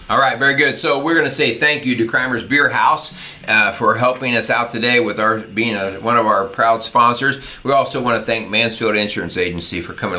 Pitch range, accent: 90-115 Hz, American